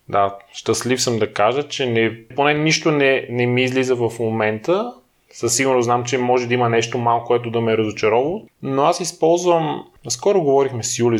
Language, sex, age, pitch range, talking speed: Bulgarian, male, 20-39, 125-175 Hz, 190 wpm